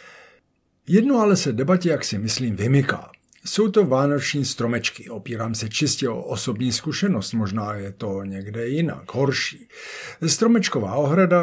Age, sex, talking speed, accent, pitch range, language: 50-69, male, 135 wpm, native, 115-165 Hz, Czech